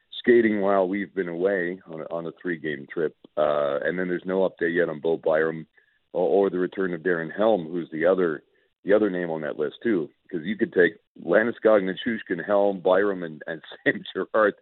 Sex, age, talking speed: male, 50-69, 205 wpm